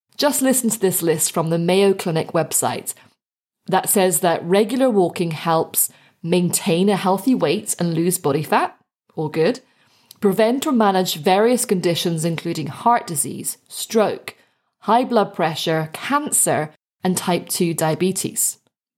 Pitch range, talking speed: 170-225 Hz, 135 wpm